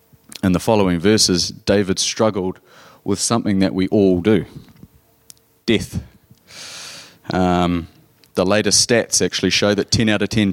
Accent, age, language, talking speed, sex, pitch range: Australian, 30-49, English, 135 wpm, male, 90-110 Hz